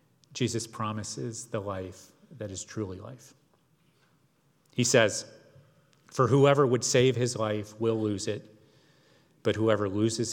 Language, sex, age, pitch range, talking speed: English, male, 40-59, 110-135 Hz, 130 wpm